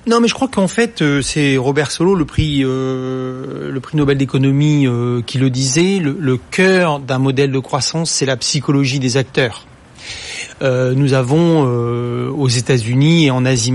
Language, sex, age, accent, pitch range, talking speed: French, male, 40-59, French, 140-185 Hz, 180 wpm